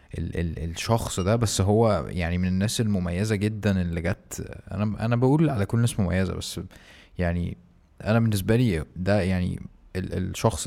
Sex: male